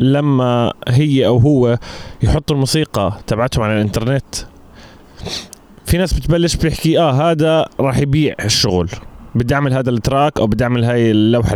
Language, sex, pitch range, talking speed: Arabic, male, 120-150 Hz, 140 wpm